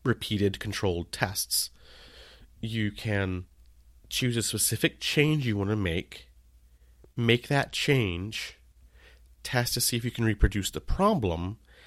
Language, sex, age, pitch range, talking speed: English, male, 30-49, 85-115 Hz, 125 wpm